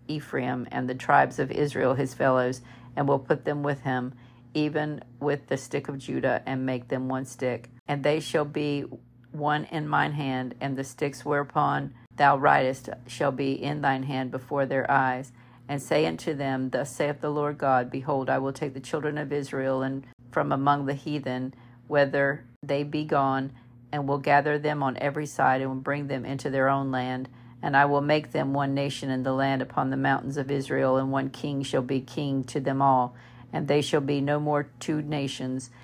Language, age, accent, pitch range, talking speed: English, 50-69, American, 125-145 Hz, 200 wpm